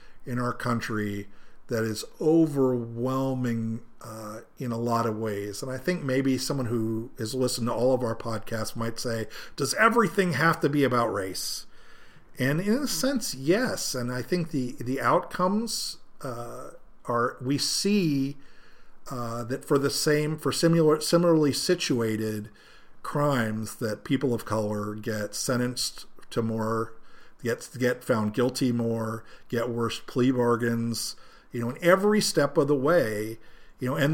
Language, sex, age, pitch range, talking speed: English, male, 50-69, 115-145 Hz, 155 wpm